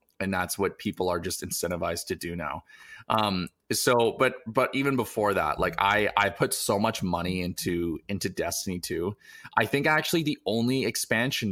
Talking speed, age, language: 175 wpm, 20-39, English